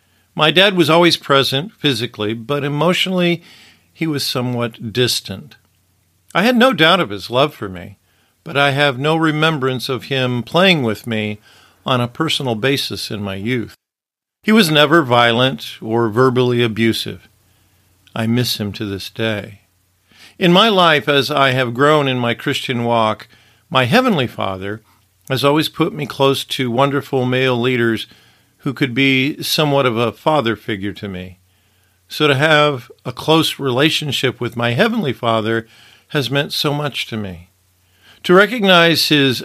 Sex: male